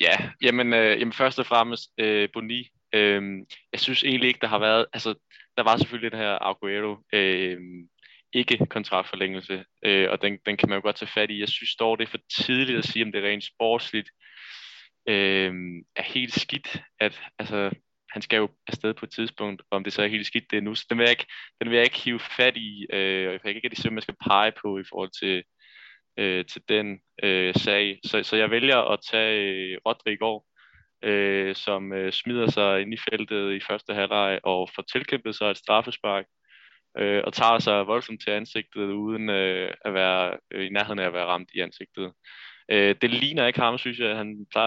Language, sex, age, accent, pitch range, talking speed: Danish, male, 20-39, native, 100-115 Hz, 215 wpm